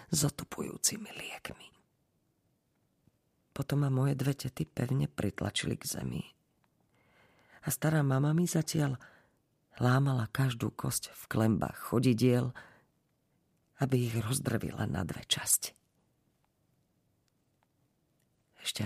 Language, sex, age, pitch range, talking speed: Slovak, female, 40-59, 120-150 Hz, 90 wpm